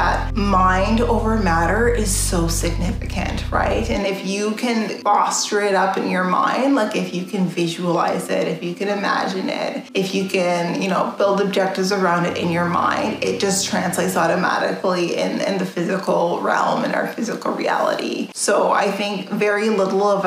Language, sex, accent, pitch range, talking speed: English, female, American, 185-220 Hz, 175 wpm